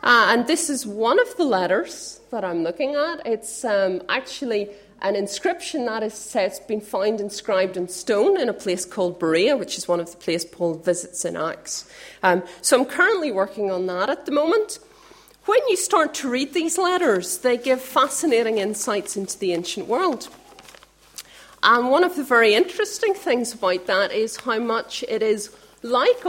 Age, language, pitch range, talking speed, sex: 40-59, English, 215-320 Hz, 180 wpm, female